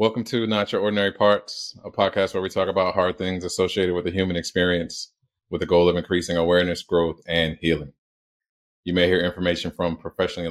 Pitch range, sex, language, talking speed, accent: 85-105 Hz, male, English, 195 wpm, American